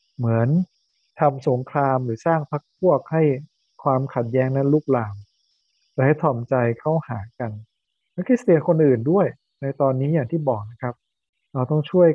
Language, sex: Thai, male